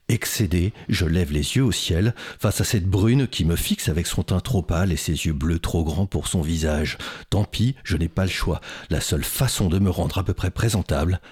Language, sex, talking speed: French, male, 245 wpm